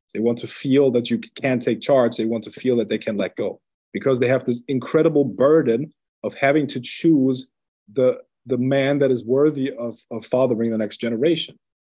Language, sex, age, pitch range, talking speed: English, male, 30-49, 115-145 Hz, 200 wpm